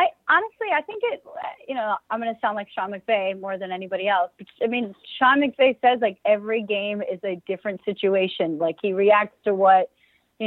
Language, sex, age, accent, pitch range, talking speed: English, female, 30-49, American, 195-235 Hz, 205 wpm